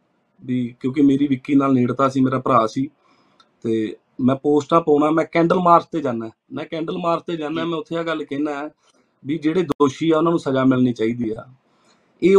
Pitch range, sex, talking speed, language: 135-170 Hz, male, 195 wpm, Punjabi